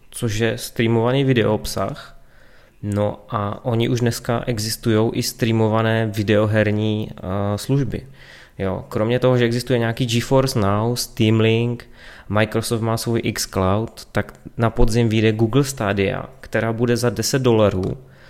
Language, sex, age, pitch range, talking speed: Czech, male, 20-39, 105-120 Hz, 130 wpm